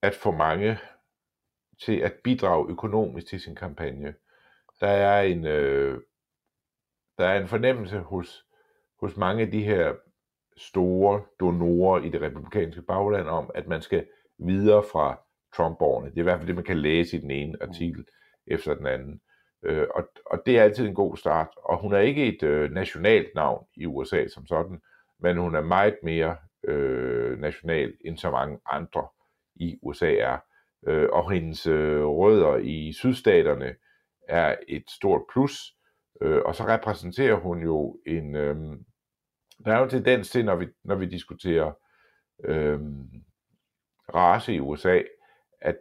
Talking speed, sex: 160 wpm, male